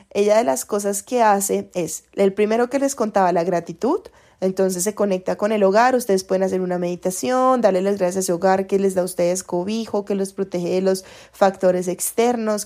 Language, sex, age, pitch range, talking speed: Spanish, female, 20-39, 195-235 Hz, 210 wpm